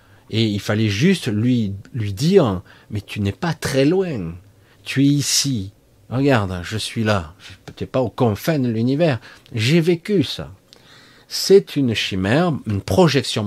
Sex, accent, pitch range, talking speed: male, French, 105-145 Hz, 165 wpm